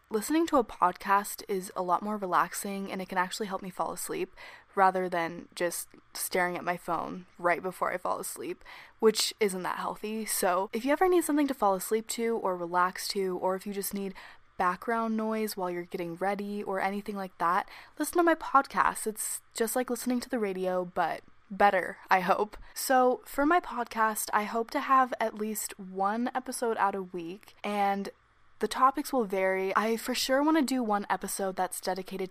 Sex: female